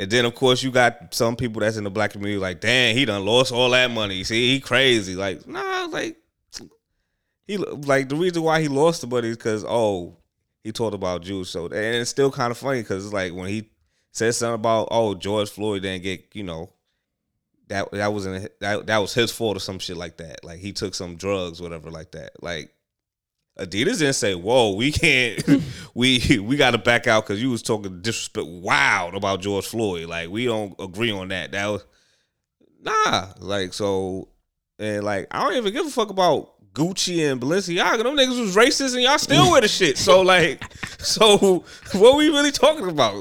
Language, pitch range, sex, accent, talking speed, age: English, 100-135 Hz, male, American, 210 wpm, 20-39